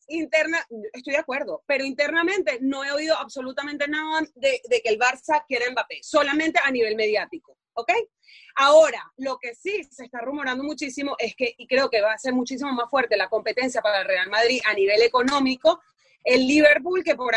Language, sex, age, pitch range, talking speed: Spanish, female, 30-49, 225-305 Hz, 190 wpm